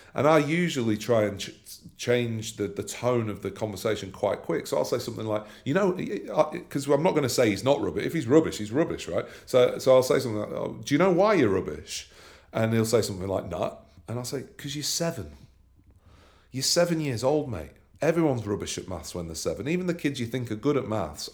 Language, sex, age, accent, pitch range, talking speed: English, male, 40-59, British, 105-140 Hz, 235 wpm